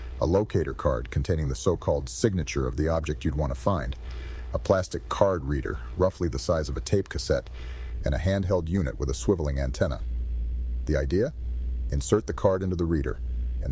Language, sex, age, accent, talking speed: English, male, 40-59, American, 185 wpm